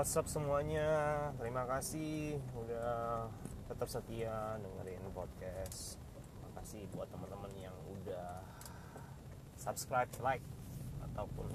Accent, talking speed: native, 90 wpm